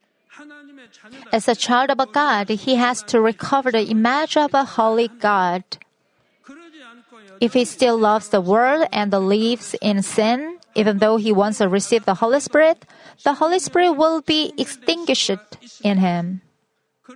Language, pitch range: Korean, 210-255 Hz